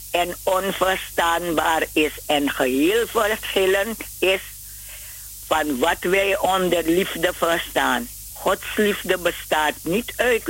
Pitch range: 150-210 Hz